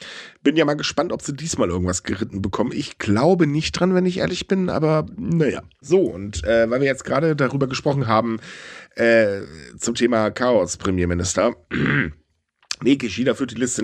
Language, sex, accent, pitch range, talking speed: German, male, German, 115-180 Hz, 175 wpm